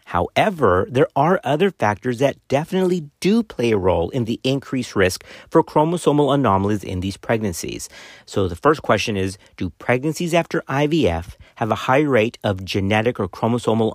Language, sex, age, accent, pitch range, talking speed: English, male, 40-59, American, 95-140 Hz, 165 wpm